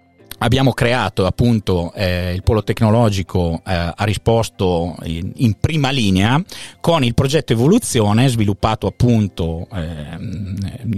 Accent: native